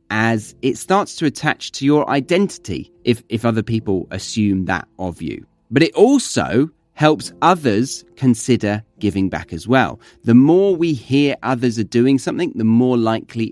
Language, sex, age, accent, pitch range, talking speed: English, male, 30-49, British, 105-145 Hz, 165 wpm